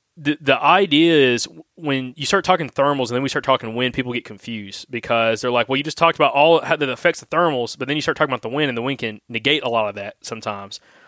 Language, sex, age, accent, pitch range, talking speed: English, male, 20-39, American, 125-155 Hz, 270 wpm